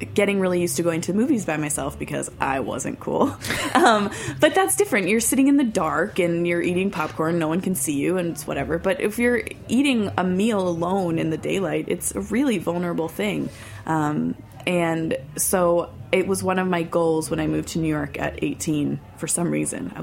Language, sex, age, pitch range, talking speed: English, female, 20-39, 145-185 Hz, 210 wpm